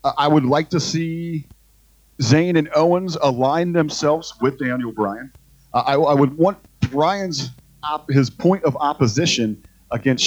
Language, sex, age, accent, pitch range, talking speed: English, male, 40-59, American, 120-165 Hz, 140 wpm